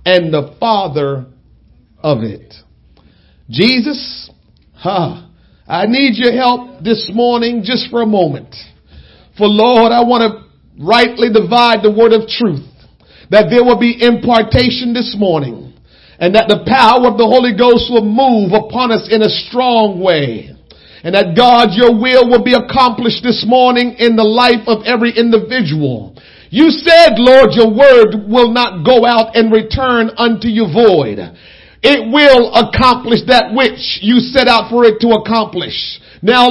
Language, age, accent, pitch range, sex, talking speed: English, 50-69, American, 215-245 Hz, male, 155 wpm